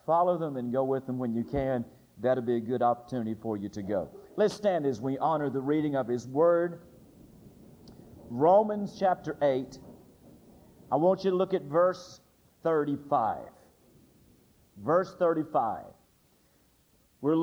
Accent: American